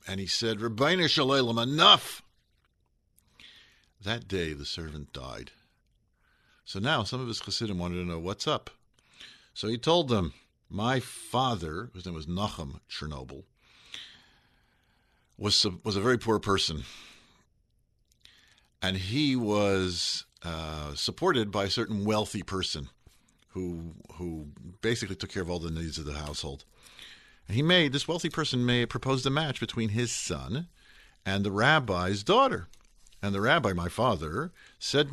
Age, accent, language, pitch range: 50-69, American, English, 80-115 Hz